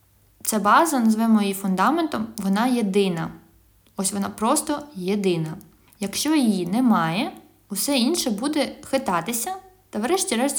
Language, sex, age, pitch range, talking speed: Ukrainian, female, 20-39, 195-240 Hz, 115 wpm